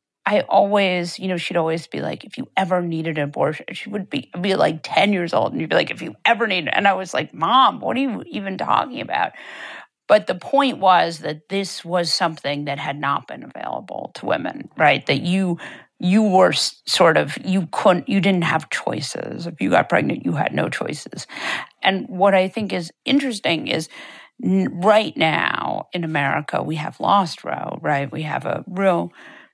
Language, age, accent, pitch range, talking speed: English, 50-69, American, 160-195 Hz, 195 wpm